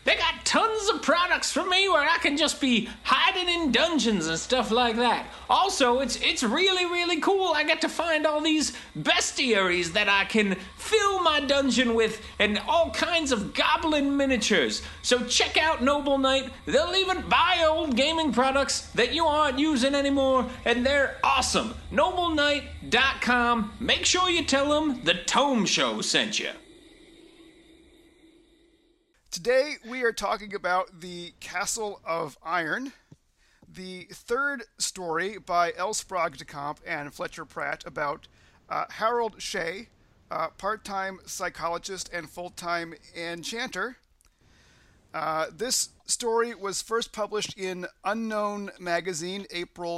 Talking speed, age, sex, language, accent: 140 wpm, 40-59, male, English, American